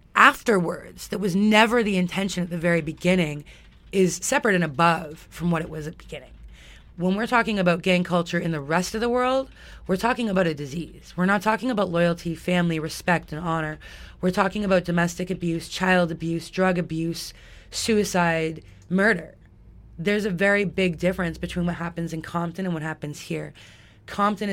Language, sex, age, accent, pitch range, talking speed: English, female, 20-39, American, 165-205 Hz, 180 wpm